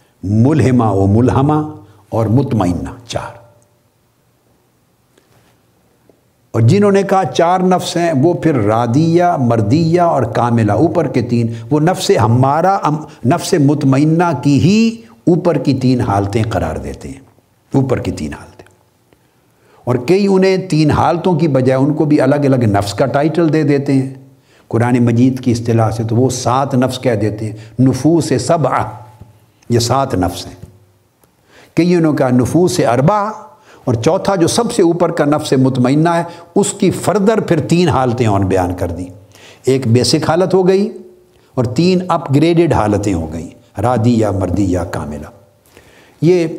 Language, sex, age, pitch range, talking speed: Urdu, male, 60-79, 115-165 Hz, 150 wpm